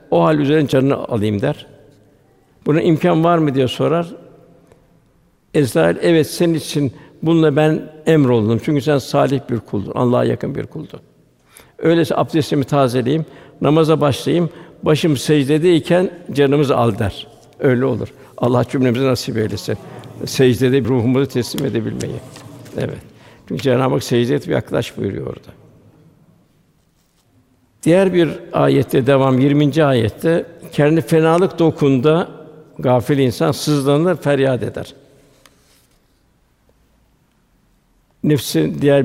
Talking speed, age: 110 wpm, 60-79